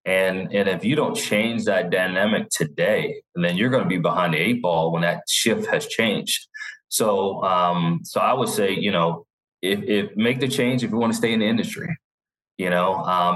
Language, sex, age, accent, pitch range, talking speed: English, male, 30-49, American, 100-130 Hz, 210 wpm